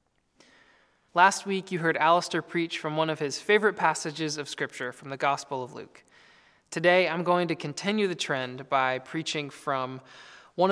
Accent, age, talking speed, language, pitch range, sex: American, 20-39, 170 wpm, English, 140-175 Hz, male